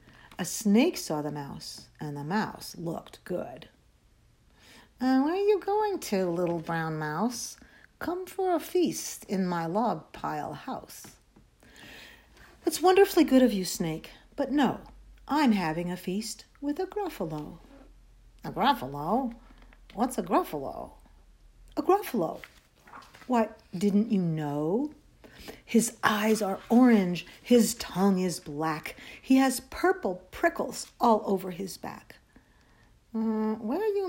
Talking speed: 130 wpm